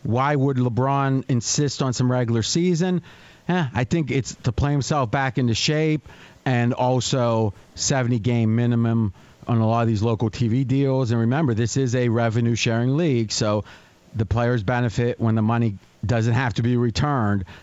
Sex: male